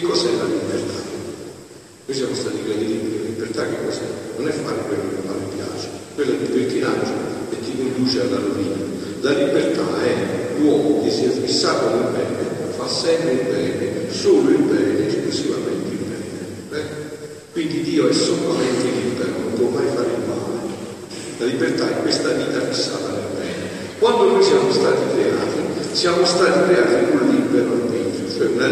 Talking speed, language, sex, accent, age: 180 wpm, Italian, male, native, 50-69